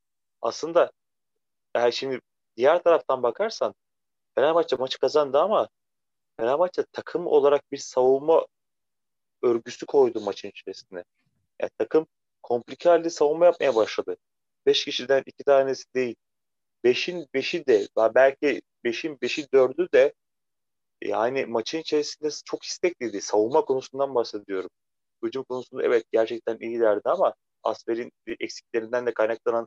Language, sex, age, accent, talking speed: Turkish, male, 30-49, native, 115 wpm